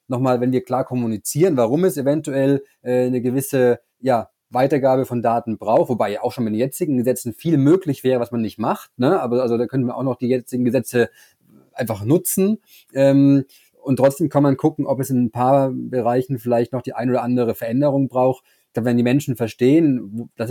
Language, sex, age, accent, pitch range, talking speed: German, male, 30-49, German, 110-130 Hz, 210 wpm